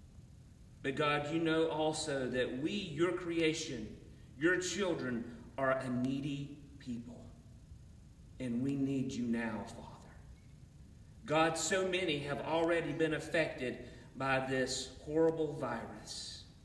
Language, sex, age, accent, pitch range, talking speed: English, male, 40-59, American, 120-160 Hz, 115 wpm